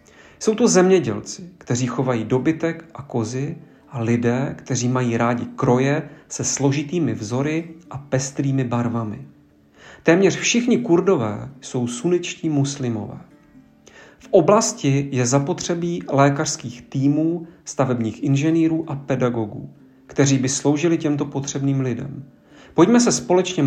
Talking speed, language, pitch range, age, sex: 115 wpm, Slovak, 135-165 Hz, 40-59, male